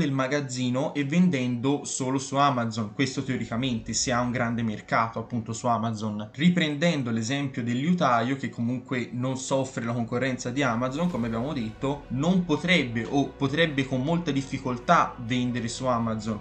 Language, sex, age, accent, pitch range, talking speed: Italian, male, 20-39, native, 120-145 Hz, 150 wpm